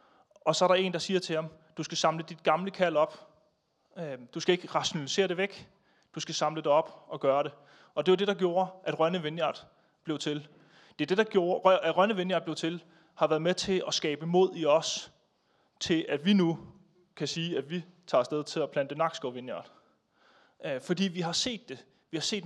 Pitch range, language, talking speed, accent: 155-185 Hz, Danish, 220 wpm, native